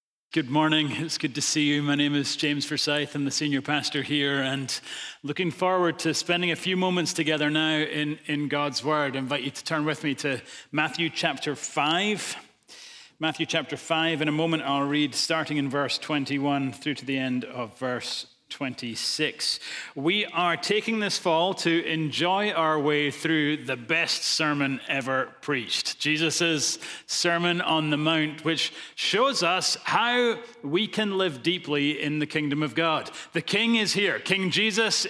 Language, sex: English, male